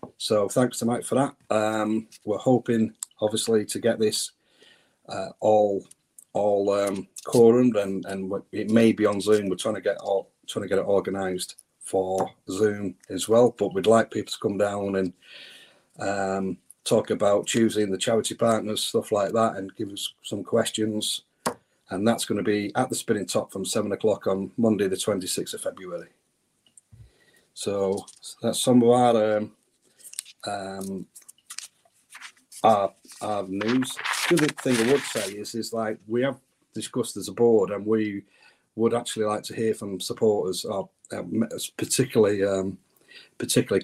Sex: male